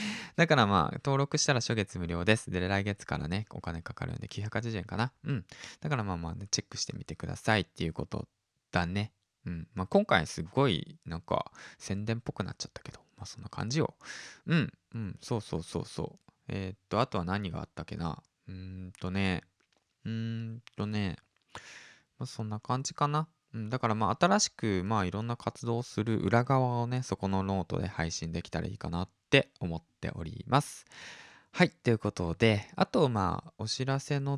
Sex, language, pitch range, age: male, Japanese, 95-130 Hz, 20-39